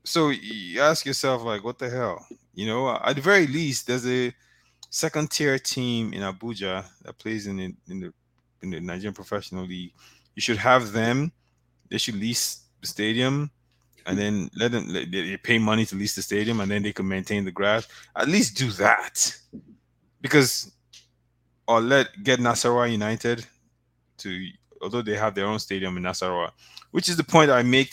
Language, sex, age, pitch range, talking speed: English, male, 20-39, 85-120 Hz, 180 wpm